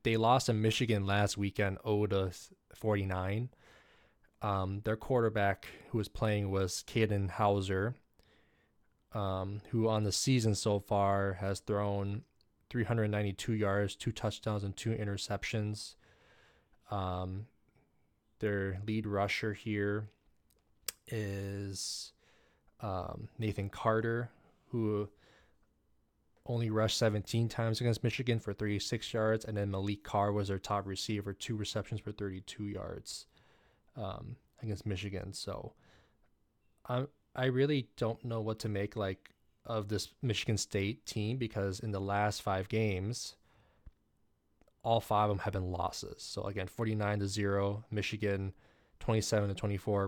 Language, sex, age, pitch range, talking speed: English, male, 20-39, 100-110 Hz, 125 wpm